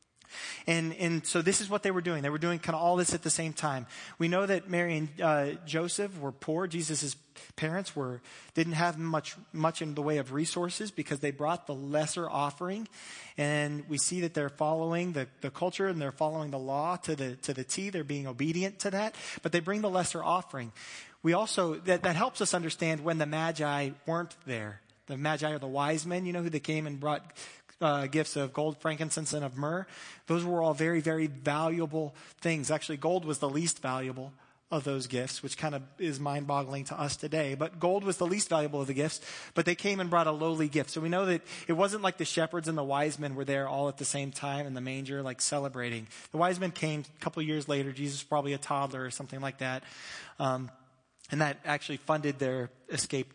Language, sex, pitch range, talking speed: English, male, 140-170 Hz, 225 wpm